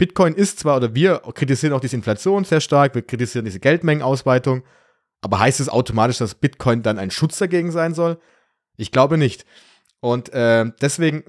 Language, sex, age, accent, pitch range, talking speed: German, male, 30-49, German, 115-150 Hz, 175 wpm